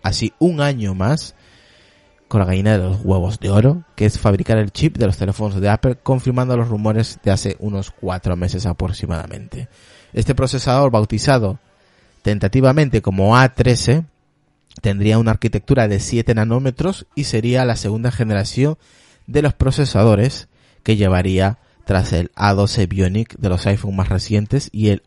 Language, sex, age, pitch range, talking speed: Spanish, male, 30-49, 100-125 Hz, 155 wpm